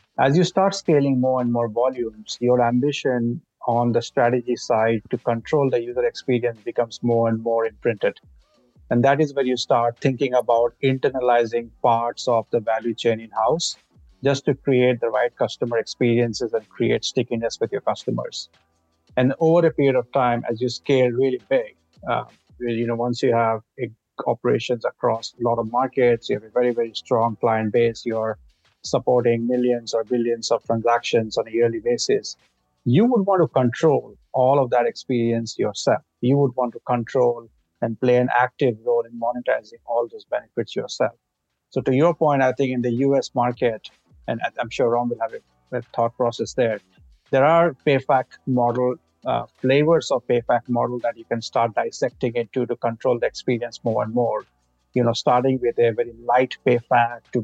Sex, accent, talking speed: male, Indian, 180 wpm